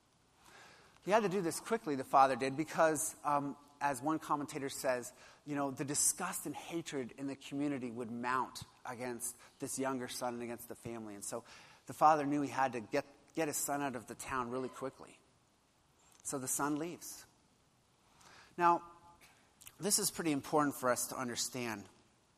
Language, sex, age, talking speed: English, male, 30-49, 175 wpm